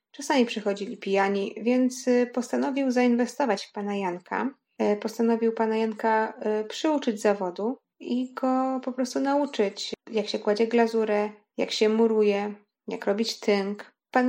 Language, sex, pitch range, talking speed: Polish, female, 210-240 Hz, 125 wpm